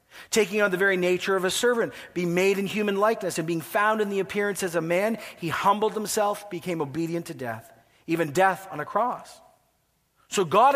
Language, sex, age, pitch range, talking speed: English, male, 40-59, 150-205 Hz, 200 wpm